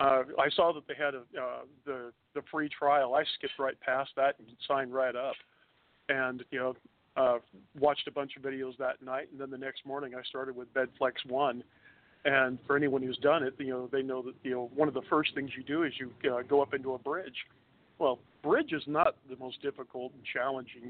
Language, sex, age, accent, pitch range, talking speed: English, male, 50-69, American, 125-140 Hz, 225 wpm